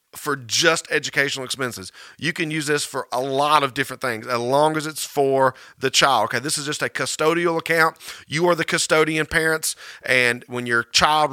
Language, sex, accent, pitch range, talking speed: English, male, American, 135-165 Hz, 195 wpm